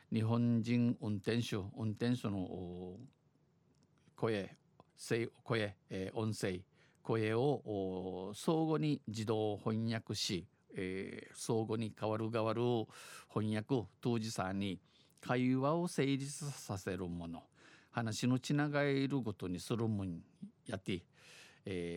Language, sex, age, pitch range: Japanese, male, 50-69, 100-135 Hz